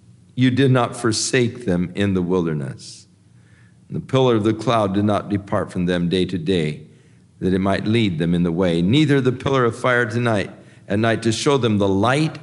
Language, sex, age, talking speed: English, male, 50-69, 205 wpm